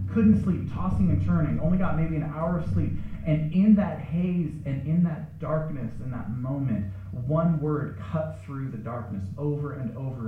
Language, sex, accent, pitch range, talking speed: English, male, American, 95-130 Hz, 185 wpm